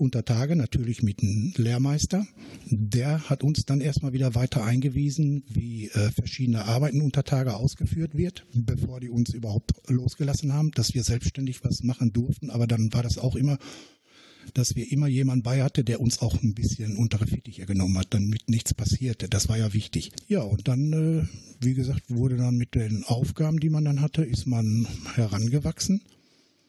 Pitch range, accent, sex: 115-140 Hz, German, male